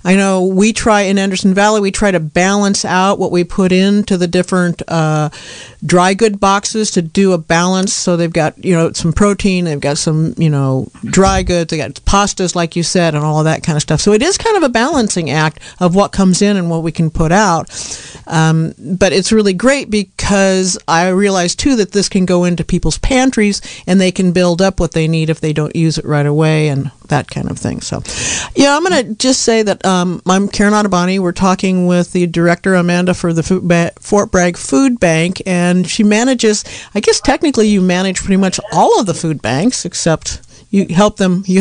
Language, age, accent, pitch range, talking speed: English, 50-69, American, 170-210 Hz, 220 wpm